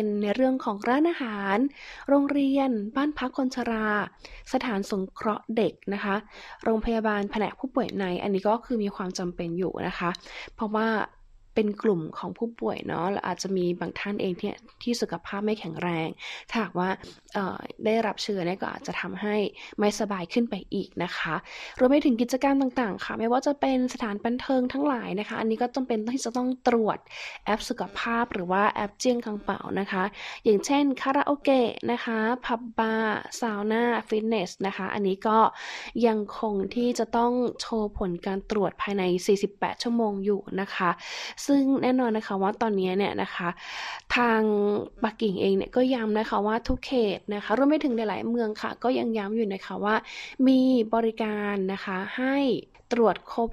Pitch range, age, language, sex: 200-245 Hz, 20-39, Thai, female